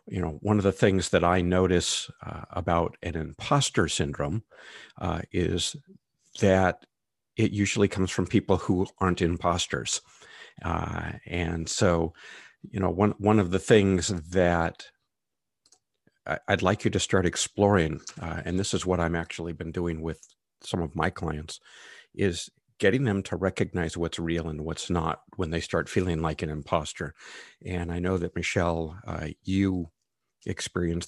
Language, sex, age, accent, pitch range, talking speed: English, male, 50-69, American, 85-100 Hz, 155 wpm